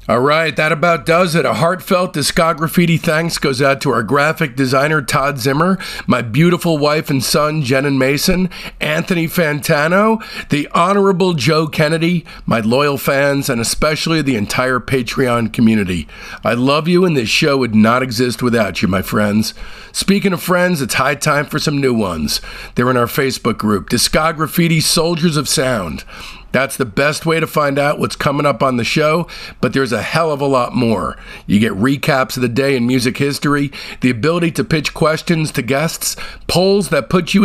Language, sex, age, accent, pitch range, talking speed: English, male, 50-69, American, 125-160 Hz, 180 wpm